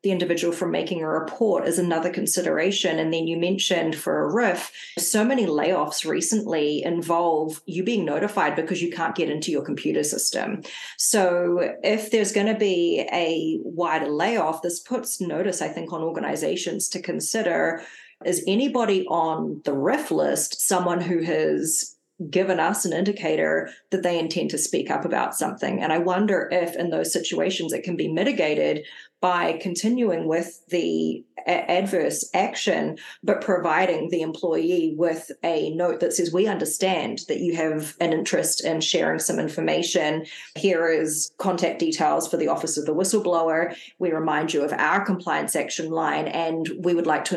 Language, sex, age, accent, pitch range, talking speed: English, female, 30-49, Australian, 160-185 Hz, 165 wpm